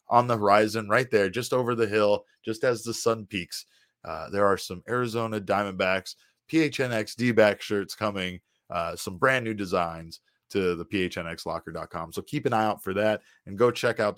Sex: male